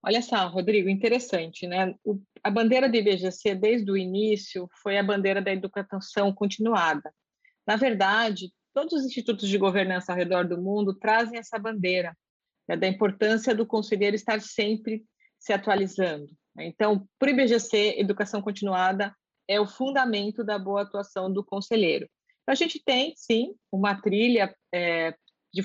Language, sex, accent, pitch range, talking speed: Portuguese, female, Brazilian, 195-235 Hz, 150 wpm